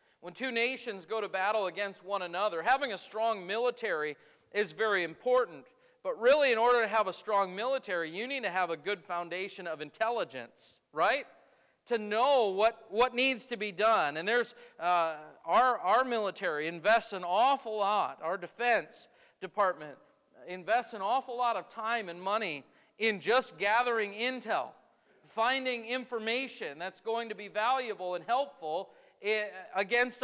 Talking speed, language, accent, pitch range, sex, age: 155 wpm, English, American, 205-255 Hz, male, 40-59